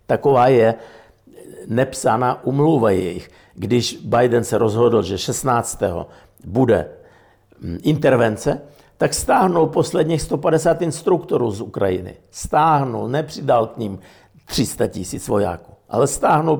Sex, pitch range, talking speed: male, 110-155 Hz, 105 wpm